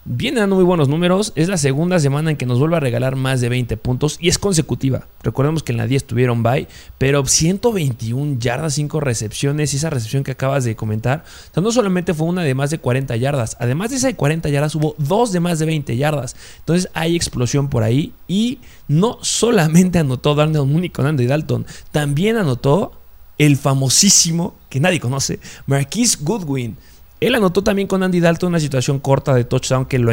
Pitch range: 125-165 Hz